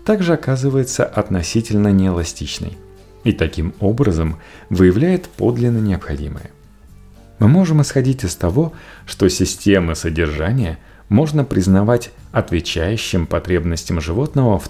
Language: Russian